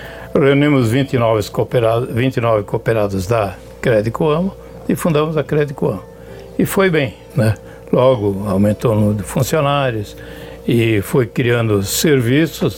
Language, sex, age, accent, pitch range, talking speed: Portuguese, male, 60-79, Brazilian, 105-140 Hz, 115 wpm